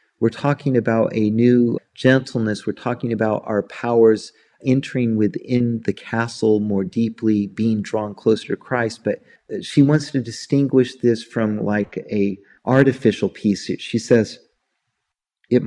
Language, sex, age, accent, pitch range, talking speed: English, male, 40-59, American, 105-130 Hz, 140 wpm